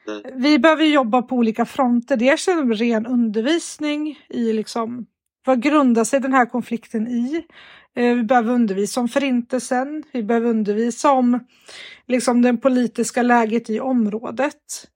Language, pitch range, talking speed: Swedish, 230-270 Hz, 145 wpm